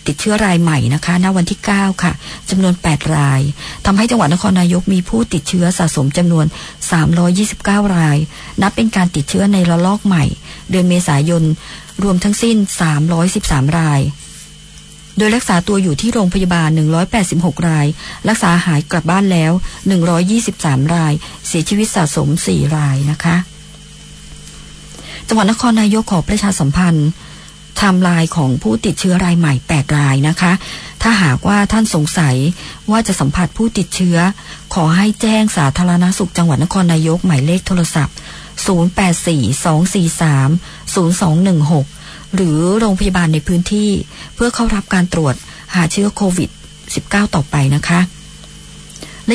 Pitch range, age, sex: 160-200 Hz, 60-79, male